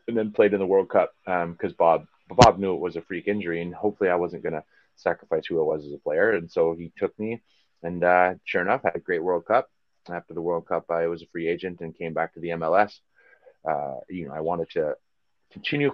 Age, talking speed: 20-39, 250 wpm